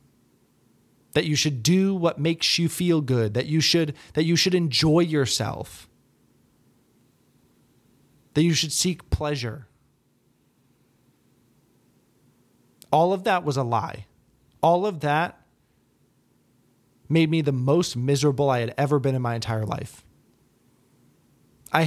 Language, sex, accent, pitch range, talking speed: English, male, American, 130-170 Hz, 125 wpm